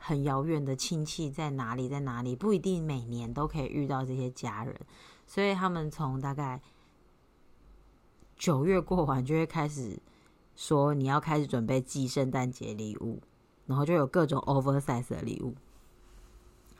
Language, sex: Chinese, female